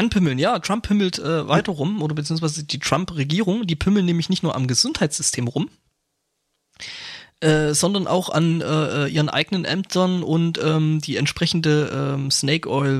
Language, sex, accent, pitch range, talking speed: German, male, German, 135-175 Hz, 150 wpm